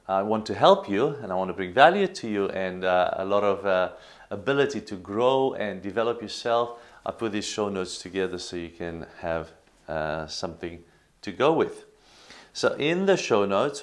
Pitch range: 95-120 Hz